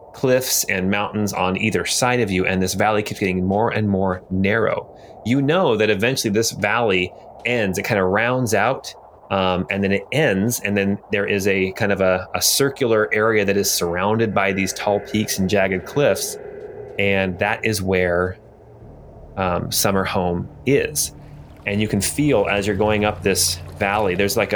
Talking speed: 185 wpm